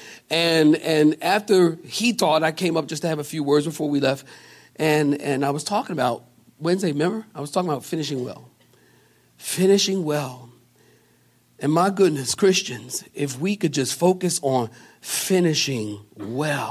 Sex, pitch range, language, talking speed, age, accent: male, 145-205 Hz, English, 160 wpm, 50-69, American